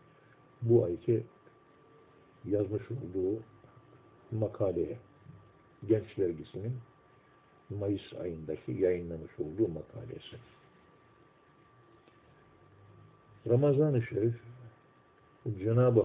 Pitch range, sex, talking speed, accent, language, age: 105-125 Hz, male, 55 wpm, native, Turkish, 60-79